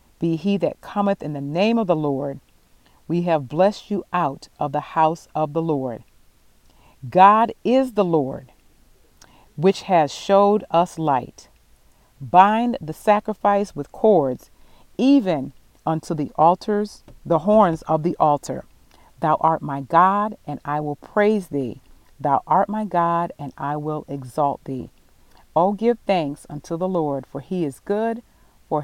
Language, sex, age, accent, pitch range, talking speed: English, female, 40-59, American, 145-195 Hz, 150 wpm